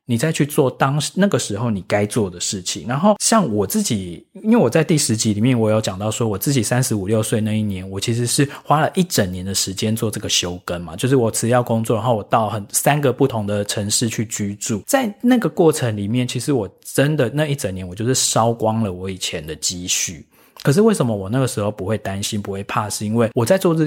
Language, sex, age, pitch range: Chinese, male, 20-39, 105-140 Hz